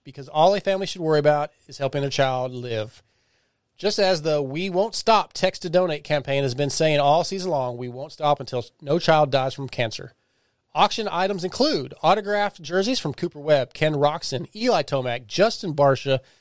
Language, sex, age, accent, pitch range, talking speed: English, male, 30-49, American, 135-185 Hz, 180 wpm